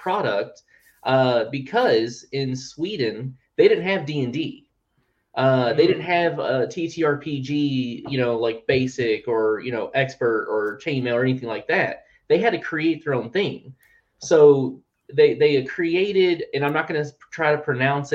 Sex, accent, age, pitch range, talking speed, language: male, American, 20-39, 125-155 Hz, 160 wpm, English